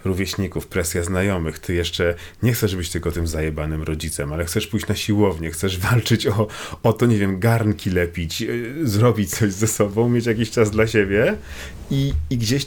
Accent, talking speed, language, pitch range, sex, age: native, 175 wpm, Polish, 85-110 Hz, male, 40-59